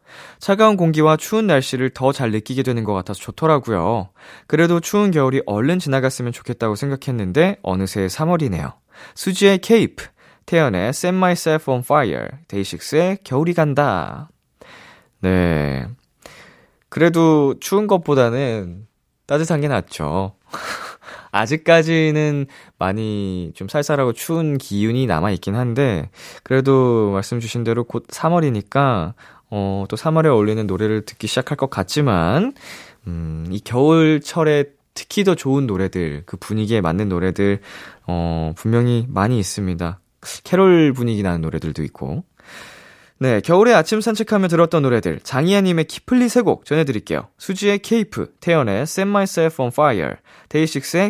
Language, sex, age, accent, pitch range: Korean, male, 20-39, native, 100-160 Hz